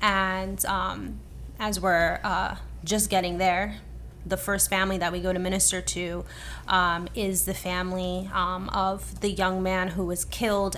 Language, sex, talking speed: English, female, 160 wpm